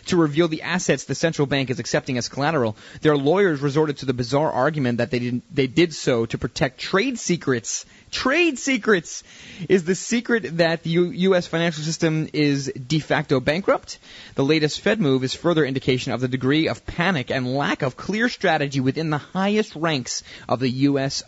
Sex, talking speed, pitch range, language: male, 185 wpm, 130-170 Hz, English